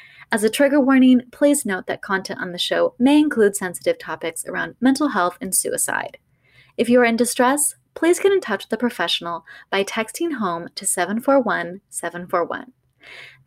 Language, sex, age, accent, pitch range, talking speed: English, female, 20-39, American, 185-270 Hz, 165 wpm